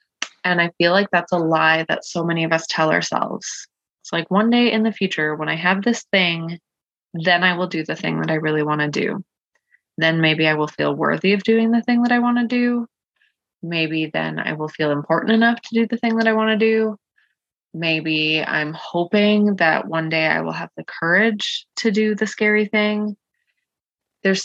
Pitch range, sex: 160-200 Hz, female